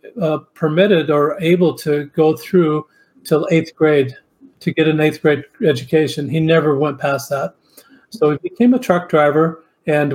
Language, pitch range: English, 150-175 Hz